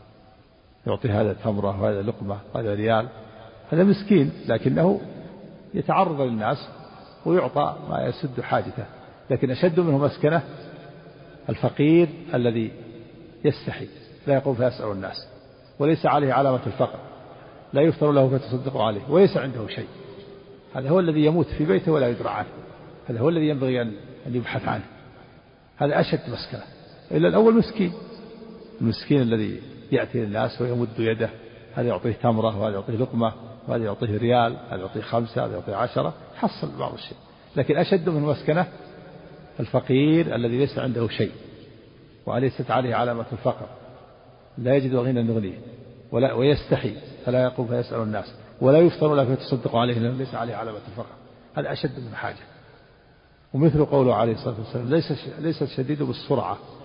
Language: Arabic